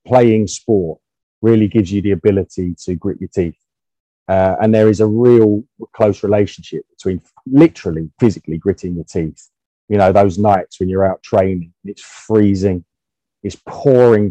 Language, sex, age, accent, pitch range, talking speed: English, male, 30-49, British, 95-125 Hz, 155 wpm